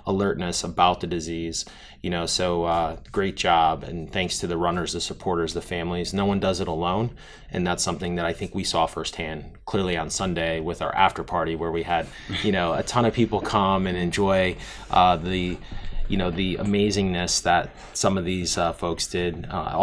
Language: English